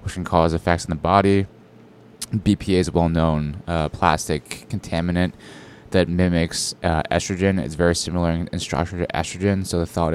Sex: male